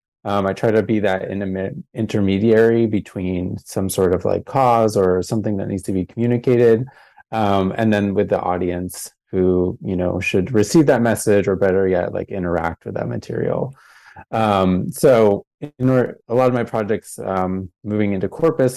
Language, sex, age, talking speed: English, male, 20-39, 175 wpm